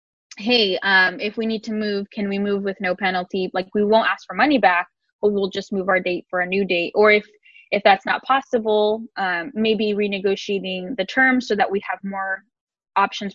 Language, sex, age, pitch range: English, female, 10-29, 195-230 Hz